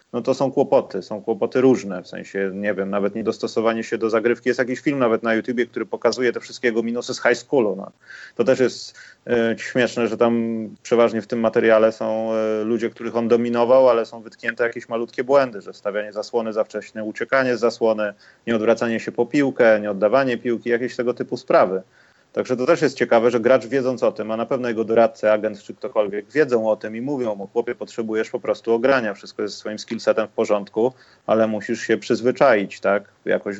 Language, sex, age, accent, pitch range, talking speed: Polish, male, 30-49, native, 110-120 Hz, 200 wpm